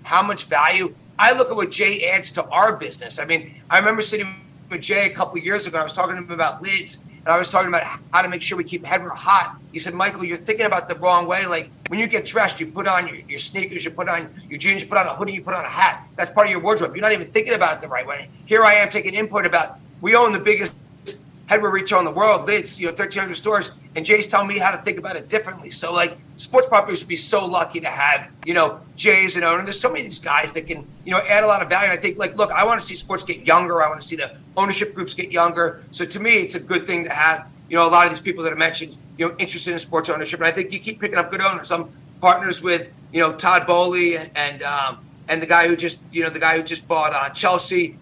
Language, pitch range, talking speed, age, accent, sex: English, 160-195 Hz, 285 wpm, 30-49, American, male